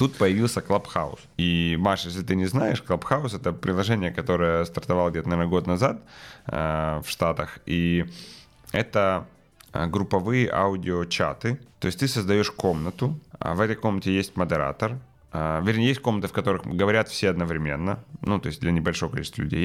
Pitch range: 85-105 Hz